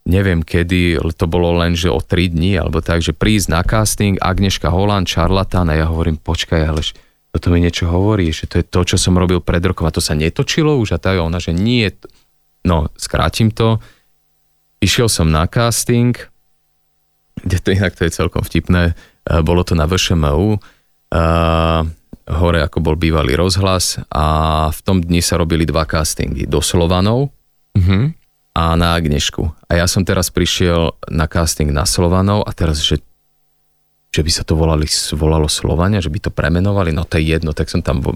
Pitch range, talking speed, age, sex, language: 80-95 Hz, 180 wpm, 30-49, male, Slovak